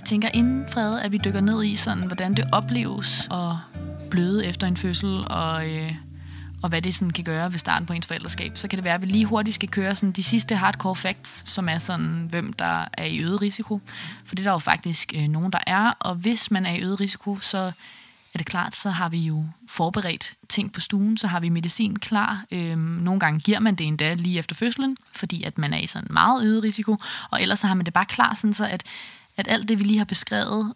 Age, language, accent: 20-39, Danish, native